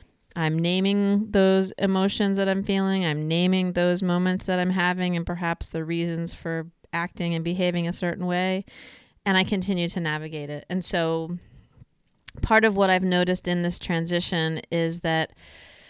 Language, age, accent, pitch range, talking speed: English, 30-49, American, 160-195 Hz, 160 wpm